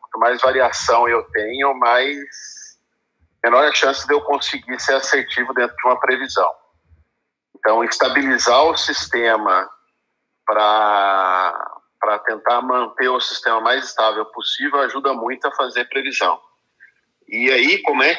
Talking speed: 125 wpm